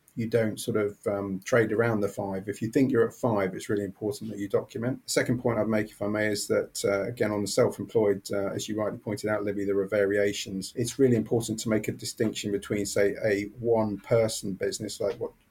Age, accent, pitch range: 30-49, British, 100-115 Hz